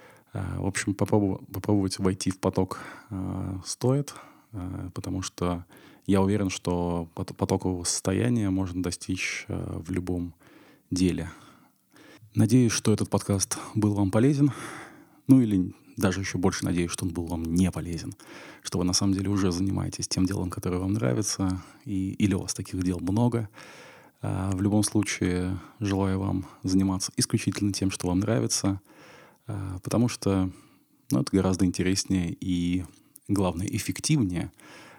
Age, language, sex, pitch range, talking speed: 20-39, Russian, male, 95-105 Hz, 140 wpm